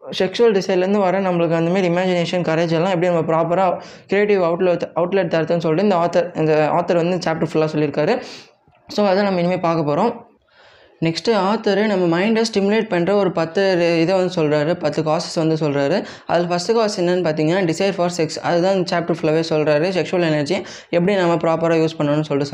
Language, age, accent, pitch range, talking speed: Tamil, 20-39, native, 160-190 Hz, 175 wpm